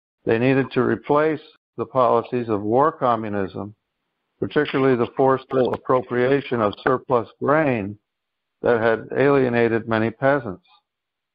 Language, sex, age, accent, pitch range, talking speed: English, male, 60-79, American, 120-140 Hz, 110 wpm